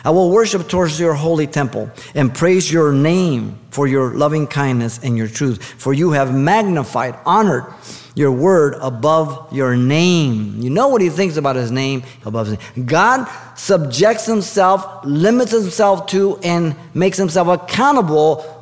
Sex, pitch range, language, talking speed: male, 125-185 Hz, English, 160 wpm